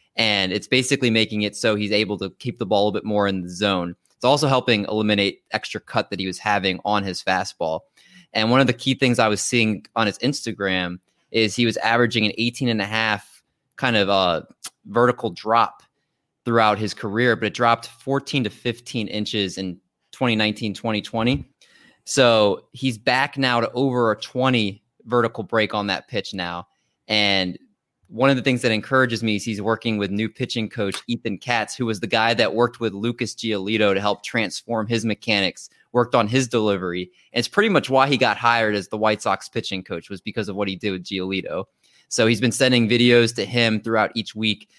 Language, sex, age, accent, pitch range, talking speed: English, male, 20-39, American, 105-120 Hz, 200 wpm